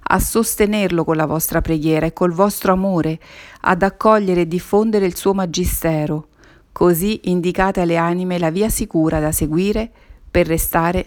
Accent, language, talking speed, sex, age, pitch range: native, Italian, 150 wpm, female, 50-69, 165-190 Hz